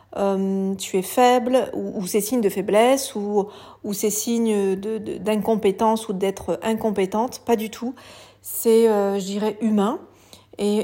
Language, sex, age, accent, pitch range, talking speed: French, female, 40-59, French, 205-240 Hz, 160 wpm